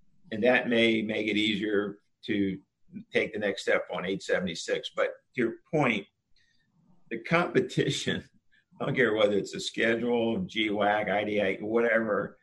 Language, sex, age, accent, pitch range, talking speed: English, male, 50-69, American, 105-125 Hz, 140 wpm